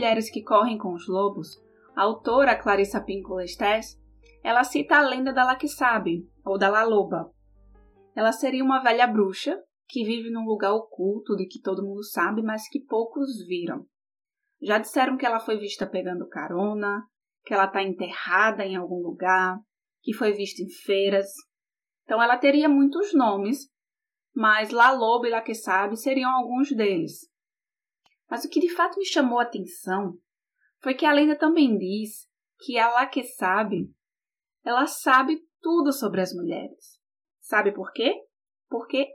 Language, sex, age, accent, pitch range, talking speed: Portuguese, female, 20-39, Brazilian, 205-285 Hz, 160 wpm